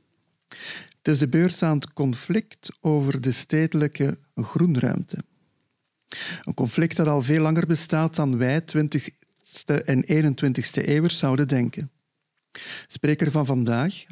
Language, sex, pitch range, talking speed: Dutch, male, 130-160 Hz, 130 wpm